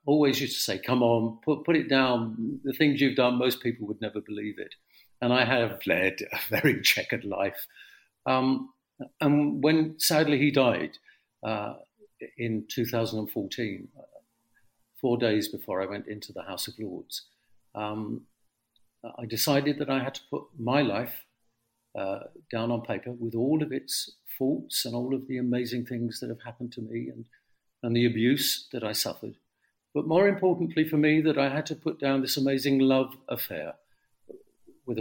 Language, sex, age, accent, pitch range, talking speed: English, male, 50-69, British, 115-140 Hz, 170 wpm